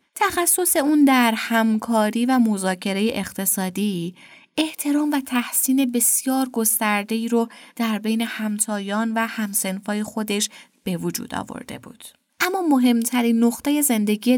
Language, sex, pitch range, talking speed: Persian, female, 210-270 Hz, 115 wpm